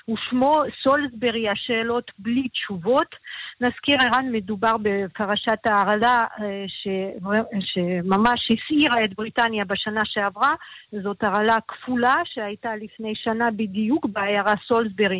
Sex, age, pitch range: female, 50-69, 205-245 Hz